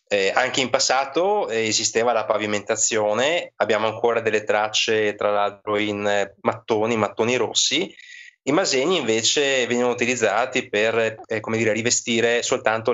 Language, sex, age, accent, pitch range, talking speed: Italian, male, 20-39, native, 110-130 Hz, 130 wpm